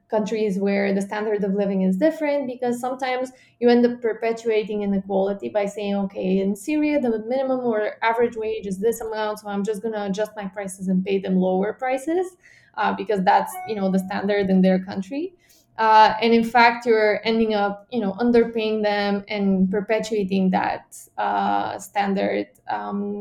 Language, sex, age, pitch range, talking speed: English, female, 20-39, 200-235 Hz, 175 wpm